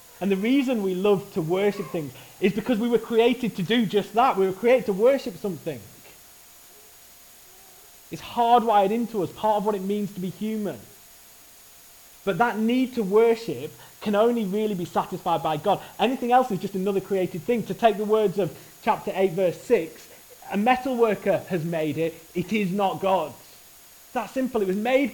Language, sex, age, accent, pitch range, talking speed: English, male, 30-49, British, 165-220 Hz, 190 wpm